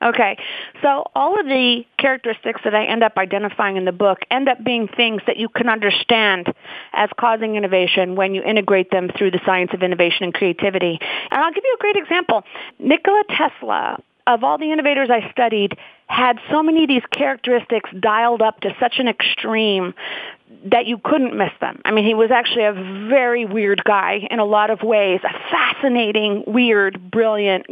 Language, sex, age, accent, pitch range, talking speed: English, female, 40-59, American, 210-260 Hz, 185 wpm